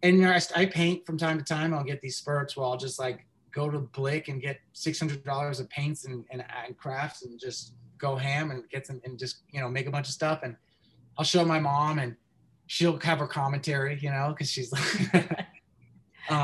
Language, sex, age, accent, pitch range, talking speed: English, male, 20-39, American, 135-175 Hz, 210 wpm